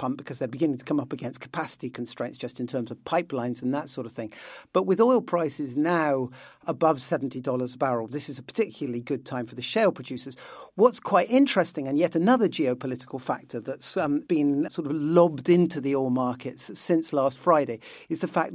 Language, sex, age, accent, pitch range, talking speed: English, male, 50-69, British, 130-175 Hz, 200 wpm